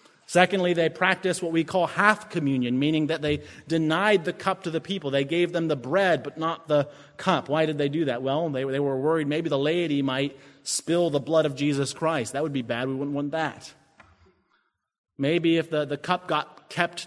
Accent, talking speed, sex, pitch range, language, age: American, 210 wpm, male, 135-170 Hz, English, 30-49